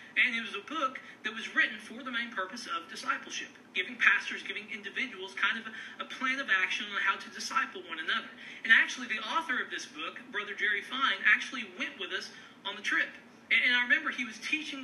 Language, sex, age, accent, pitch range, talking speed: English, male, 40-59, American, 215-260 Hz, 215 wpm